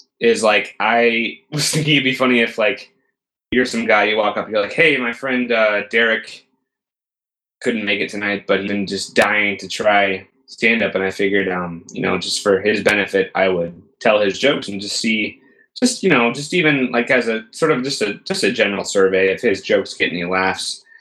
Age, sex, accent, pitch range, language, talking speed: 20-39, male, American, 100-130 Hz, English, 210 wpm